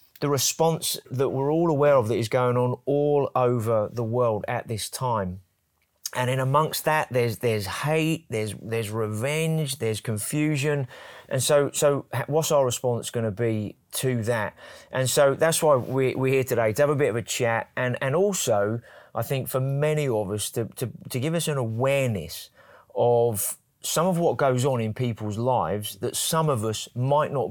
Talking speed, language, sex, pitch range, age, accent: 190 wpm, English, male, 115-140 Hz, 30-49, British